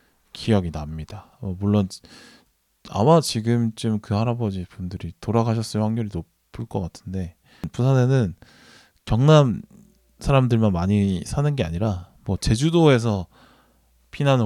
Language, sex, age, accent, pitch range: Korean, male, 20-39, native, 90-135 Hz